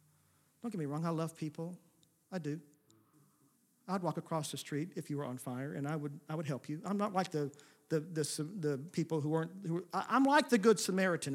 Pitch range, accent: 150-215 Hz, American